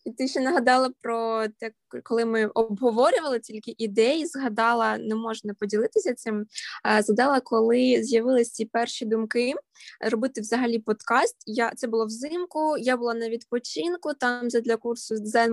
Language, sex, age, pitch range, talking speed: Ukrainian, female, 20-39, 220-270 Hz, 145 wpm